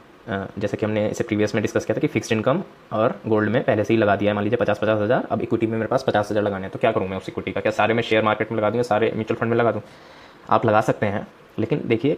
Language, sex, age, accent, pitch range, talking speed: Hindi, male, 20-39, native, 105-120 Hz, 295 wpm